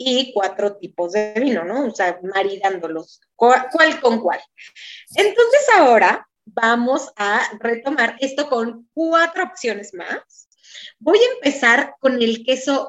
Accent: Mexican